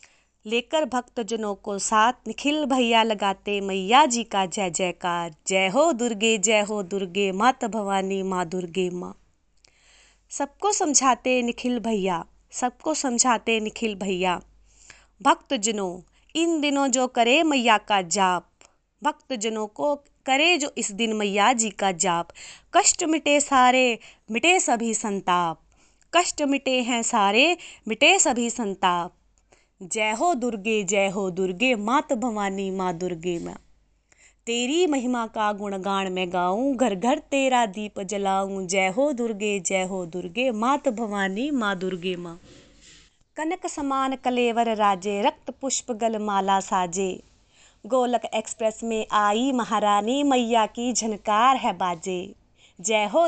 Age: 20-39